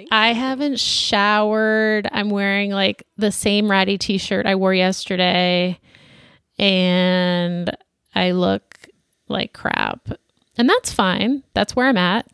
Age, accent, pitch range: 20-39, American, 190-245 Hz